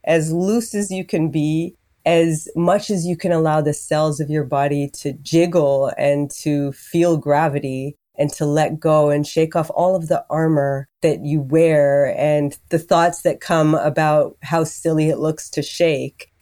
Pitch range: 145-175 Hz